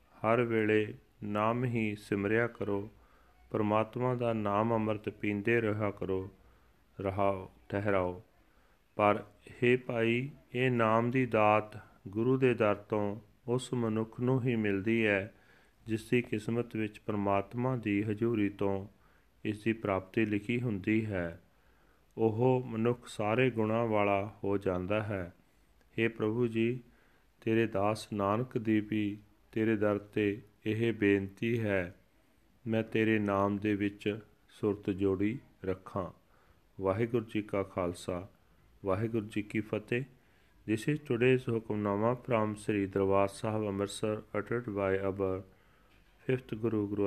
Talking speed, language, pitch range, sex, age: 125 wpm, Punjabi, 100-115 Hz, male, 40-59